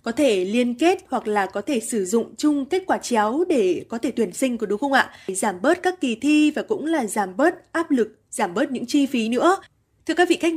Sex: female